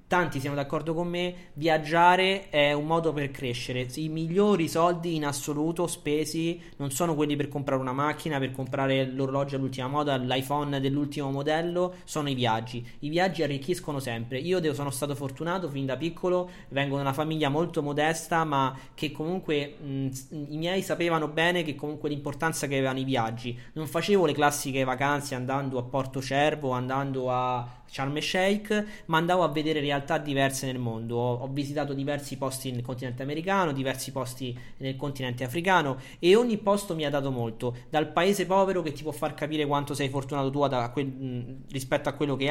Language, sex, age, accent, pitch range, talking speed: Italian, male, 20-39, native, 135-165 Hz, 175 wpm